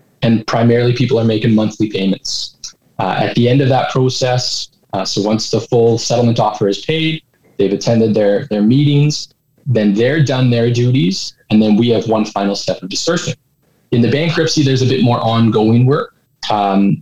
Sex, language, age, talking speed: male, English, 20-39, 185 wpm